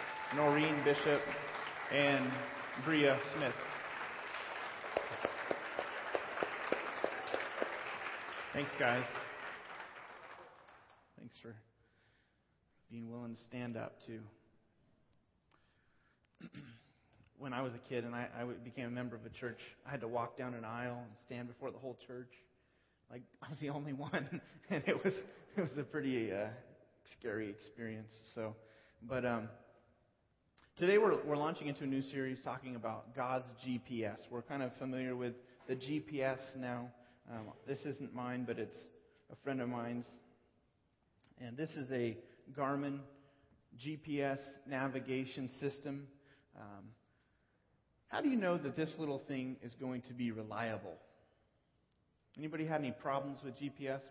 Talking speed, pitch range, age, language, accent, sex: 130 wpm, 115-140 Hz, 30-49, English, American, male